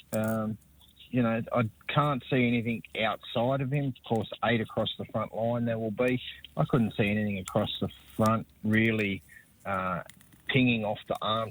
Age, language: 30-49, English